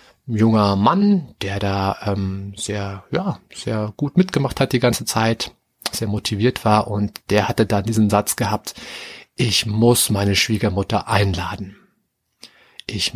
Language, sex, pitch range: German, male, 100-120 Hz